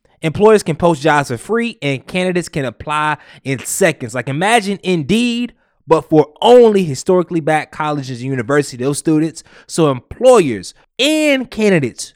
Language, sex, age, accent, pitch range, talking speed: English, male, 20-39, American, 130-170 Hz, 145 wpm